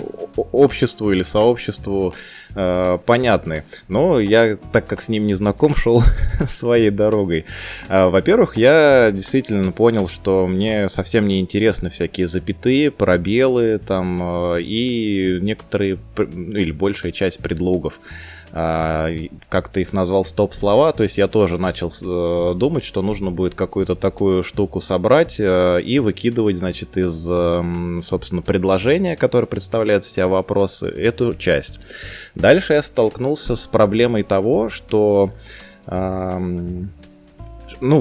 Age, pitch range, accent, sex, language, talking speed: 20-39, 95-115 Hz, native, male, Russian, 120 wpm